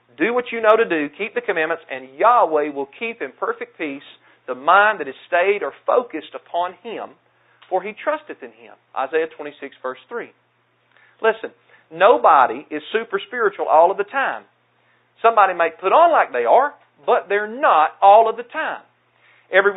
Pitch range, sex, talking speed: 155-230 Hz, male, 175 wpm